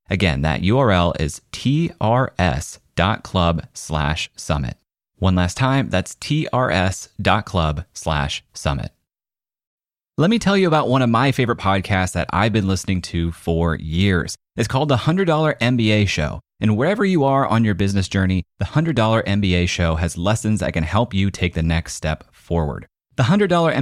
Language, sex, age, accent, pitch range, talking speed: English, male, 30-49, American, 85-120 Hz, 150 wpm